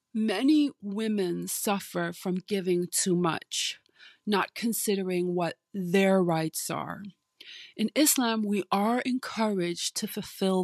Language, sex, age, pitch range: English, female, 30-49, 170-220 Hz